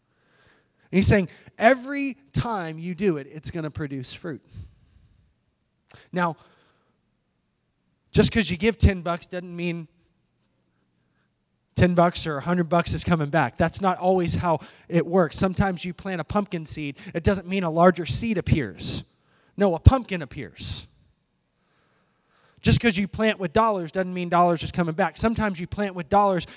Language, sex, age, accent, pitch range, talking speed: English, male, 20-39, American, 145-195 Hz, 155 wpm